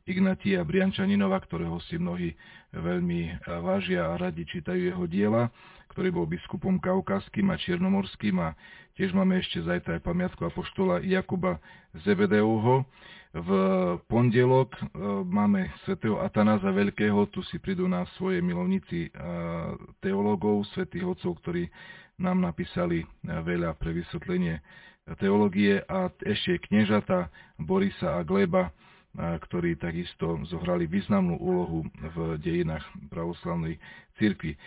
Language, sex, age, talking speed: Slovak, male, 40-59, 115 wpm